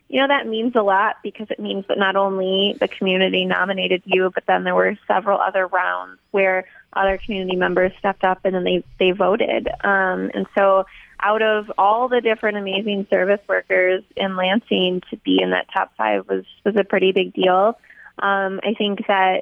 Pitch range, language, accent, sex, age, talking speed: 185-210 Hz, English, American, female, 20-39, 195 wpm